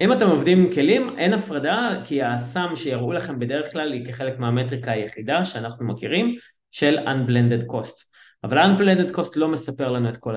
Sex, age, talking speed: male, 20-39, 175 wpm